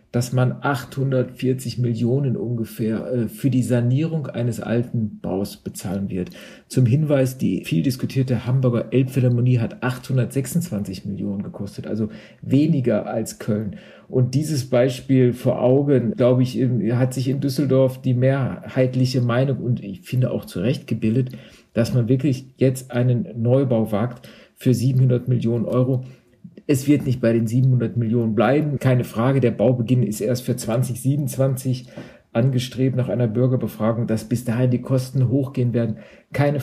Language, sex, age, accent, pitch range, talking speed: German, male, 50-69, German, 120-135 Hz, 145 wpm